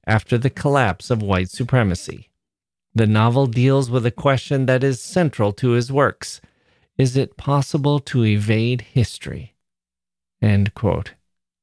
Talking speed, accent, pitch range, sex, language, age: 135 wpm, American, 110-140 Hz, male, English, 40-59